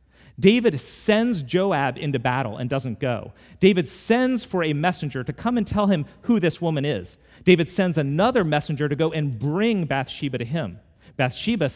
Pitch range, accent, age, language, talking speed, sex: 100-155 Hz, American, 40-59, English, 175 wpm, male